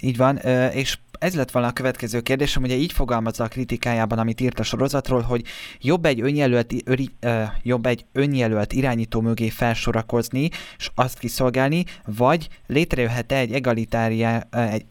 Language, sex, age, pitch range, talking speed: Hungarian, male, 20-39, 115-130 Hz, 135 wpm